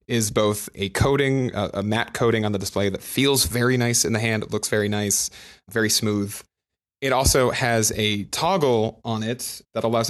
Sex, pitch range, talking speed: male, 105-125 Hz, 190 wpm